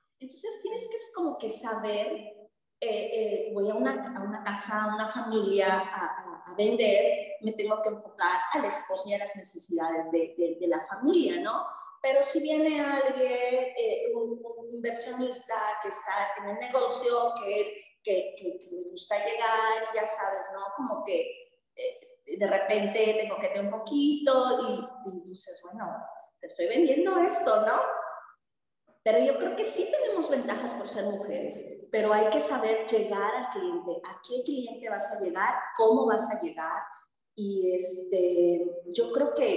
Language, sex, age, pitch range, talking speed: Spanish, female, 30-49, 205-285 Hz, 170 wpm